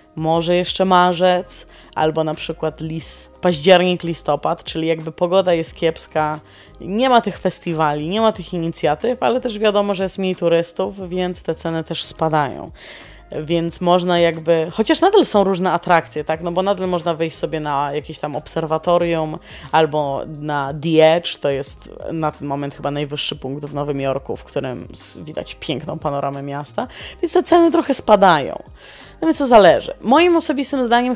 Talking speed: 165 wpm